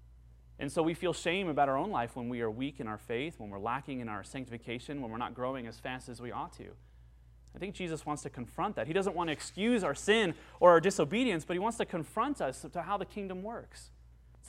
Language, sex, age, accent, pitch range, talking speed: English, male, 30-49, American, 115-175 Hz, 255 wpm